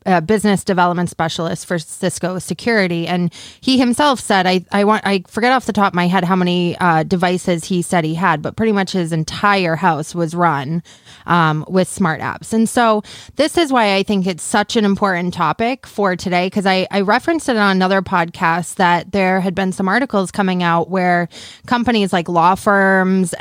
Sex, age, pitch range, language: female, 20-39, 170-200 Hz, English